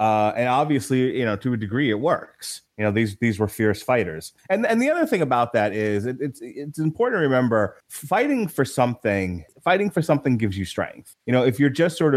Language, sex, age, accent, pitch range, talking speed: English, male, 30-49, American, 105-130 Hz, 225 wpm